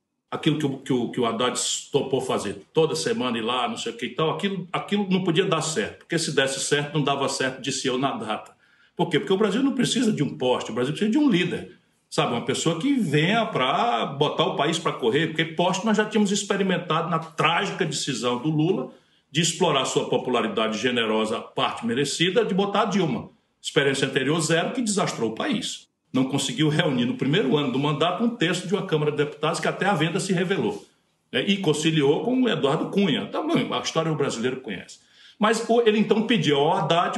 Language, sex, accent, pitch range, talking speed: Portuguese, male, Brazilian, 145-210 Hz, 210 wpm